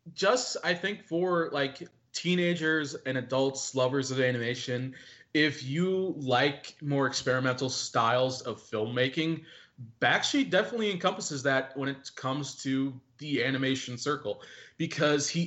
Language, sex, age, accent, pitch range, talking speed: English, male, 20-39, American, 125-160 Hz, 125 wpm